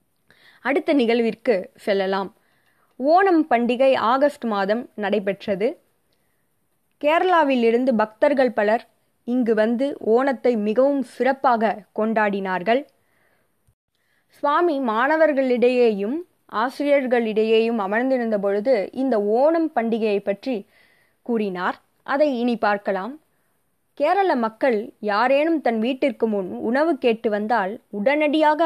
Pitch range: 215-275 Hz